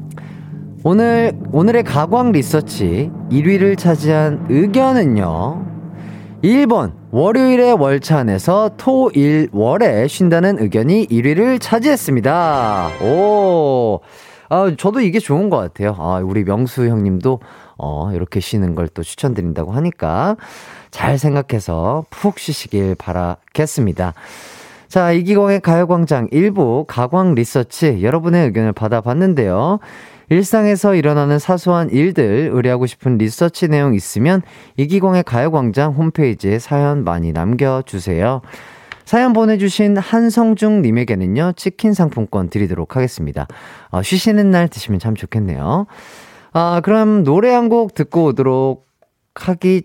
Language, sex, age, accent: Korean, male, 30-49, native